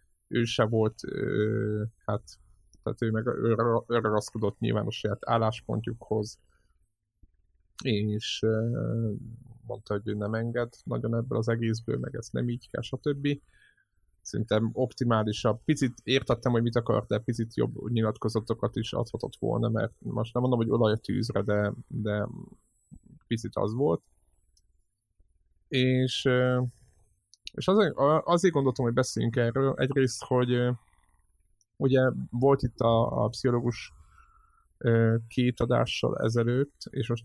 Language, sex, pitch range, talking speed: Hungarian, male, 105-125 Hz, 135 wpm